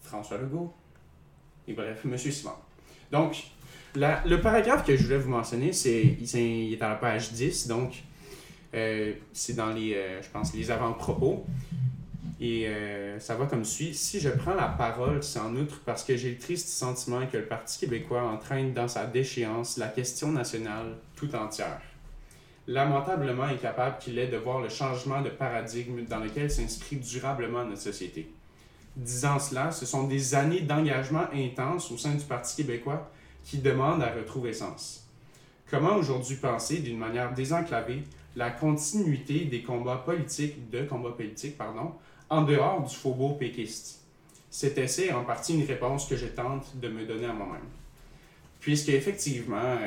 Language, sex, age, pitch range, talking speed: French, male, 20-39, 120-150 Hz, 165 wpm